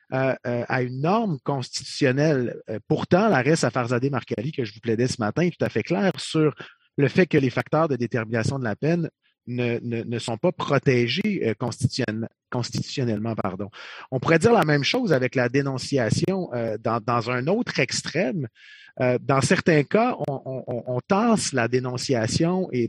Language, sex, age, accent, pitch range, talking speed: English, male, 30-49, Canadian, 125-160 Hz, 185 wpm